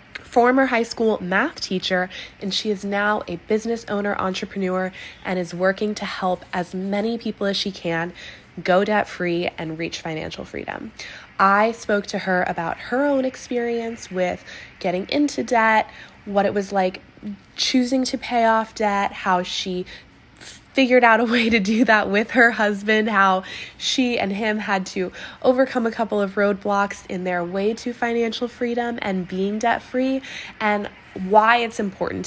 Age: 20-39